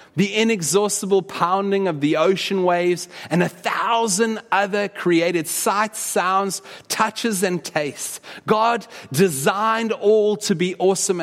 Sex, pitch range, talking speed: male, 165-205 Hz, 125 wpm